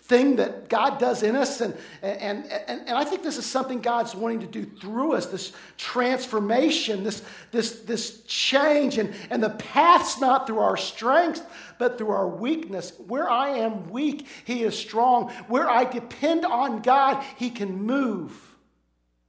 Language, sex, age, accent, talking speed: English, male, 50-69, American, 170 wpm